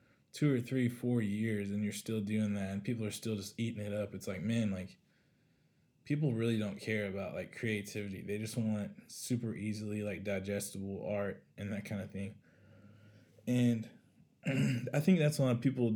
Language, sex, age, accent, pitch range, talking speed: English, male, 20-39, American, 105-115 Hz, 190 wpm